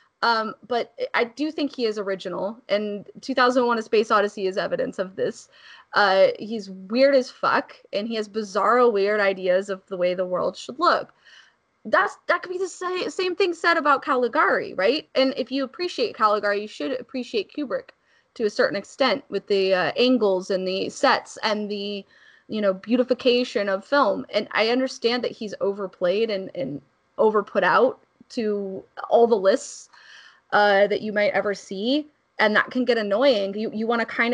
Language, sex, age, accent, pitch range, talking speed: English, female, 20-39, American, 205-255 Hz, 180 wpm